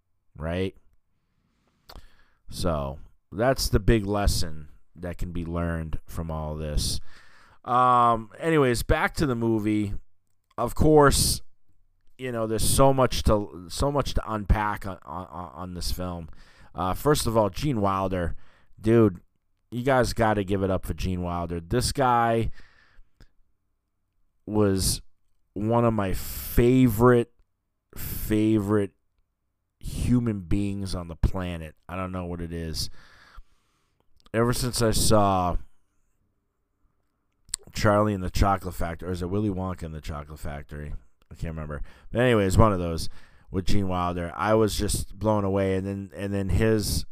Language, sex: English, male